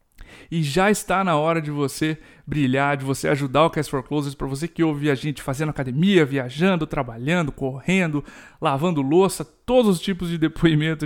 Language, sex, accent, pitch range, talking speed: Portuguese, male, Brazilian, 150-190 Hz, 180 wpm